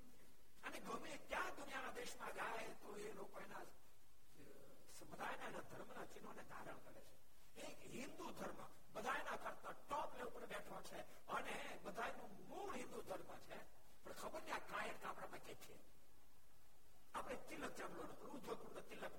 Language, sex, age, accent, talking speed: Gujarati, male, 60-79, native, 45 wpm